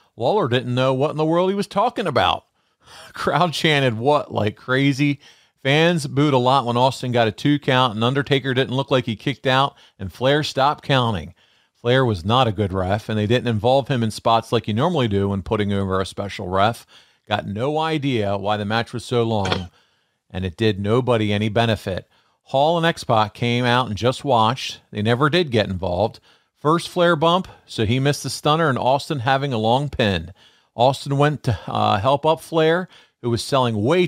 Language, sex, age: English, male, 40-59